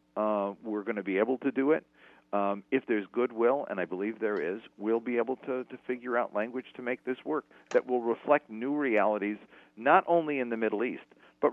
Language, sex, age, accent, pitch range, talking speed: English, male, 50-69, American, 110-150 Hz, 235 wpm